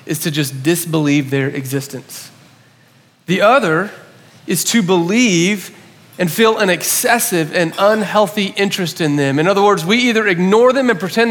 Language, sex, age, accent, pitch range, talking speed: English, male, 30-49, American, 150-200 Hz, 155 wpm